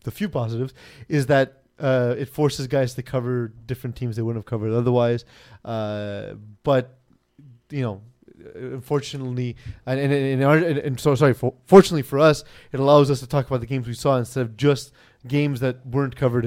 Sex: male